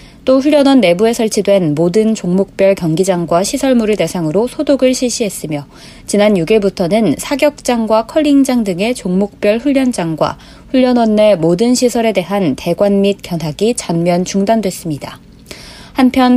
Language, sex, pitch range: Korean, female, 185-245 Hz